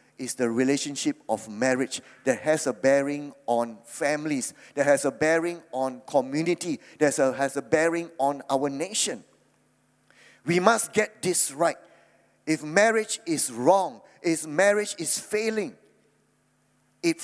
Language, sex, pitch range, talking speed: English, male, 150-220 Hz, 135 wpm